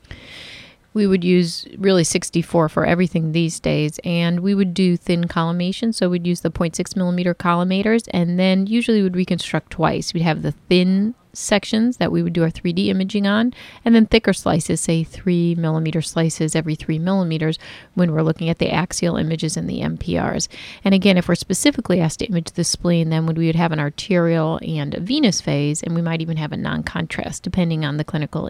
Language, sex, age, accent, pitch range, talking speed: English, female, 30-49, American, 165-195 Hz, 195 wpm